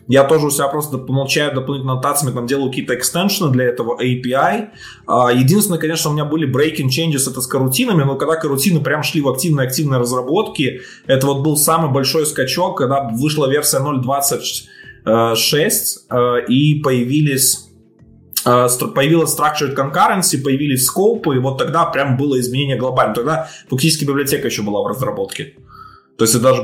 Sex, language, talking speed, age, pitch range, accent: male, Russian, 155 wpm, 20-39, 125-155 Hz, native